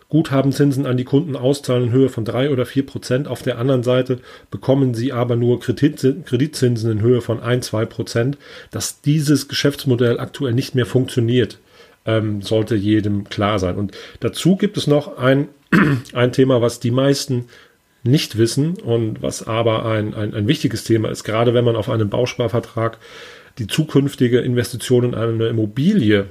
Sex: male